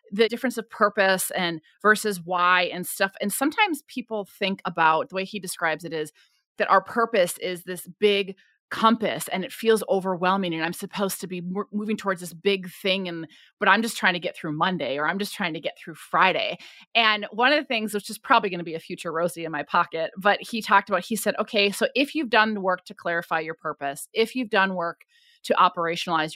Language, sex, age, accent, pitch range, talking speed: English, female, 30-49, American, 180-230 Hz, 220 wpm